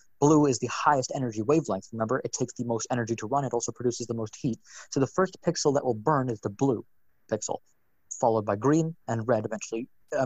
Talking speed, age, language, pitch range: 220 wpm, 20-39, English, 115-145 Hz